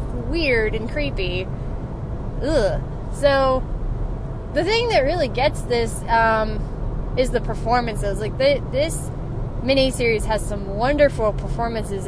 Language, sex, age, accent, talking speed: English, female, 20-39, American, 110 wpm